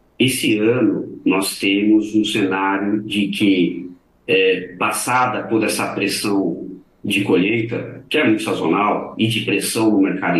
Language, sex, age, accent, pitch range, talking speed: Portuguese, male, 40-59, Brazilian, 95-120 Hz, 140 wpm